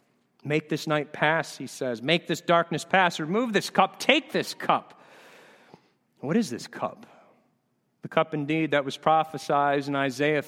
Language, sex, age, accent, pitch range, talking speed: English, male, 40-59, American, 140-180 Hz, 160 wpm